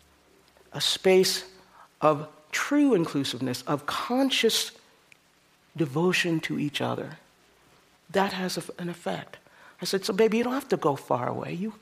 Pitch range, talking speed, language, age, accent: 155-210 Hz, 135 wpm, English, 50-69, American